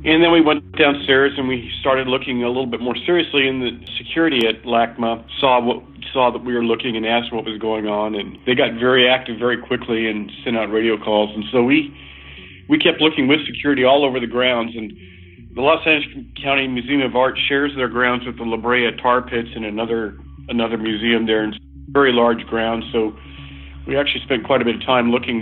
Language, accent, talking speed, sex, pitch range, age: English, American, 215 wpm, male, 110-125 Hz, 50-69